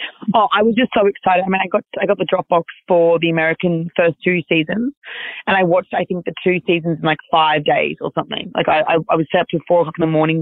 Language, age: English, 30-49